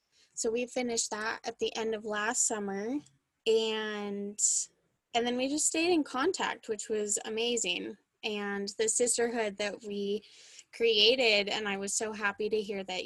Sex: female